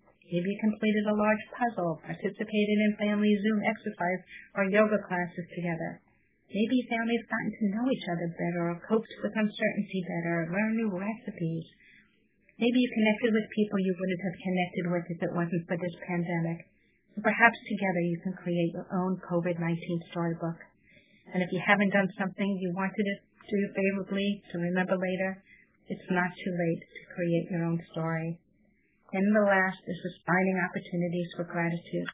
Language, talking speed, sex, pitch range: English, 165 wpm, male, 175-205 Hz